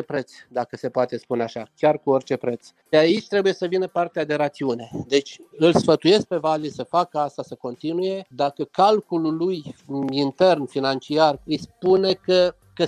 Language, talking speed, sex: Romanian, 170 wpm, male